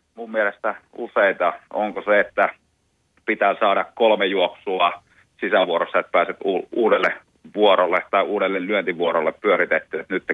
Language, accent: Finnish, native